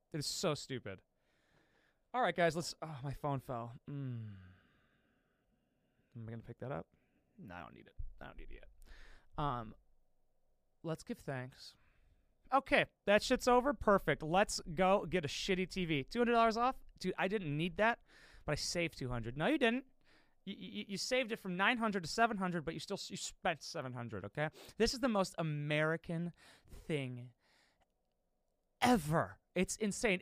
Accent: American